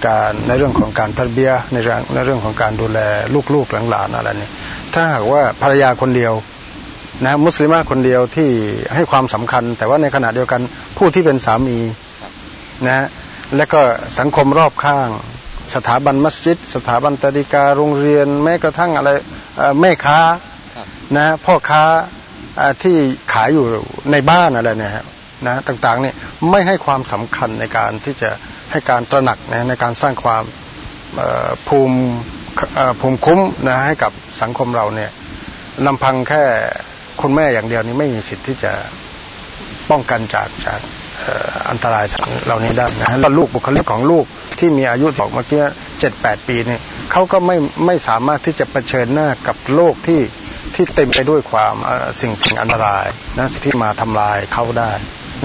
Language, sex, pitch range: Thai, male, 115-145 Hz